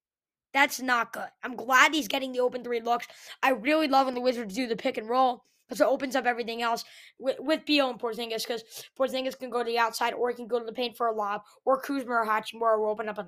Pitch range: 230-270 Hz